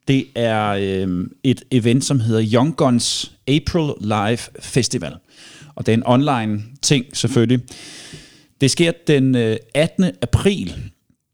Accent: native